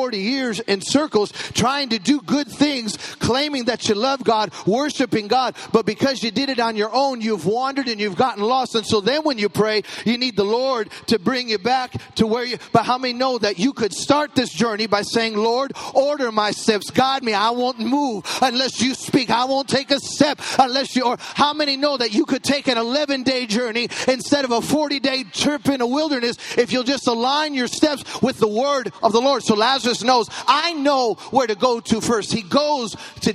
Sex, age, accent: male, 40-59, American